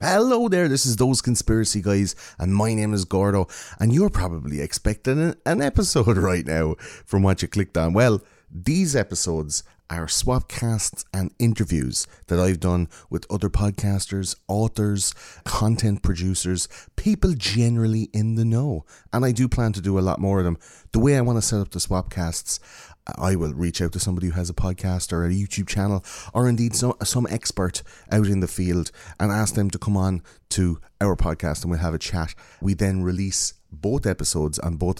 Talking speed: 190 wpm